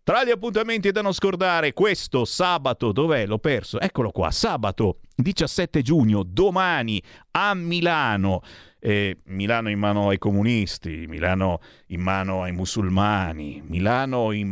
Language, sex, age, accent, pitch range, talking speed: Italian, male, 50-69, native, 95-150 Hz, 130 wpm